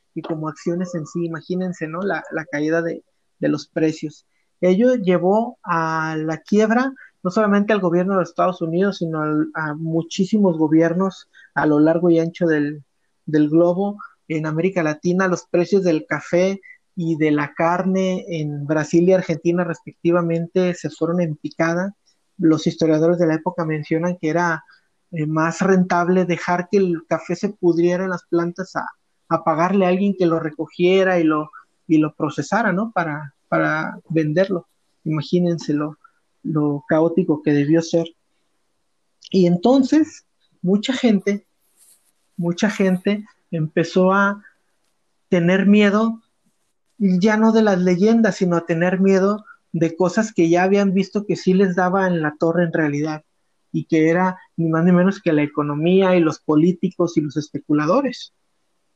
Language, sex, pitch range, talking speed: Spanish, male, 160-190 Hz, 155 wpm